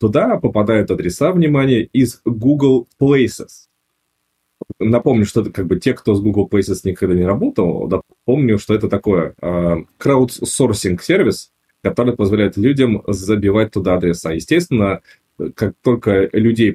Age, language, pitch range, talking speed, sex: 20-39, English, 85-110 Hz, 130 wpm, male